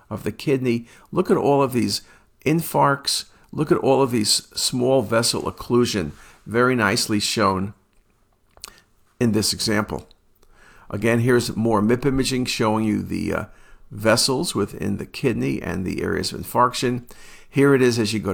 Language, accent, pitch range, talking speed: English, American, 100-130 Hz, 155 wpm